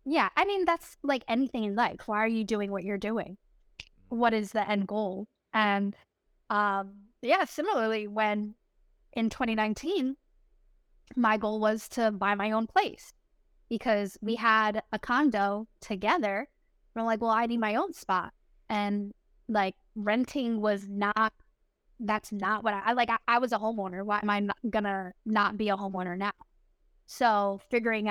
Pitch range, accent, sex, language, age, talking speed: 200-230 Hz, American, female, English, 10-29, 165 wpm